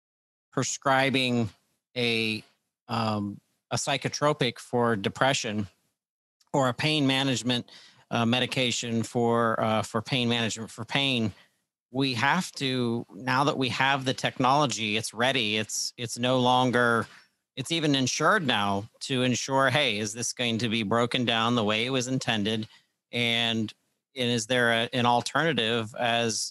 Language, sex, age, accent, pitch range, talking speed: English, male, 40-59, American, 115-130 Hz, 140 wpm